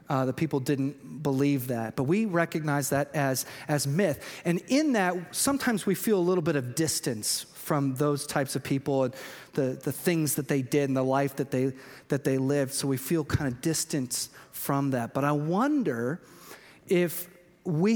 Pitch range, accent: 140-180 Hz, American